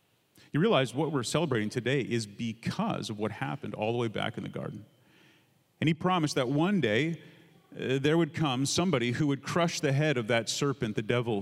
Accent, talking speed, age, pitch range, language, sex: American, 205 wpm, 40-59, 125-160 Hz, English, male